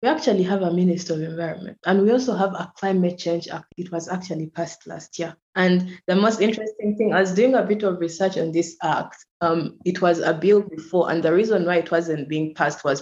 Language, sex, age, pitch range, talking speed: English, female, 20-39, 160-185 Hz, 235 wpm